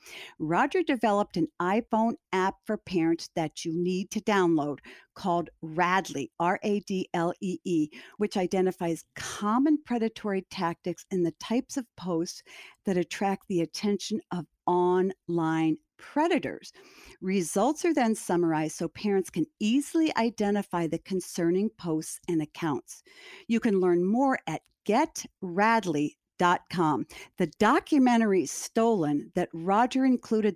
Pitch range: 170-225 Hz